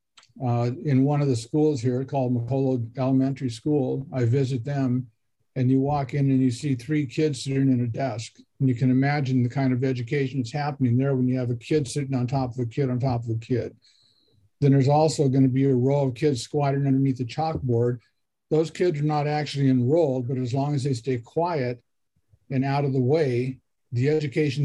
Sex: male